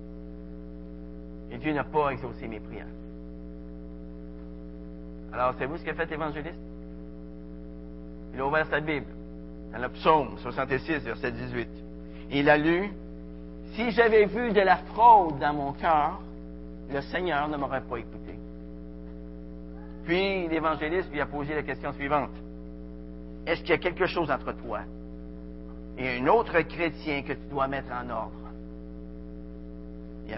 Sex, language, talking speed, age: male, French, 140 wpm, 50-69